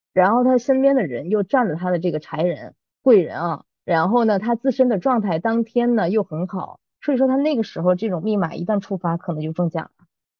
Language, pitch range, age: Chinese, 175-265 Hz, 20-39